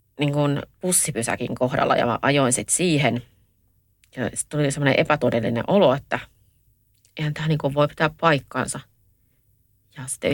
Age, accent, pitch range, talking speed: 30-49, native, 115-150 Hz, 120 wpm